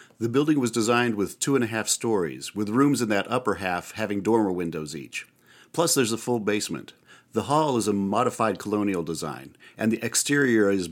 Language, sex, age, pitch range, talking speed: English, male, 50-69, 95-120 Hz, 200 wpm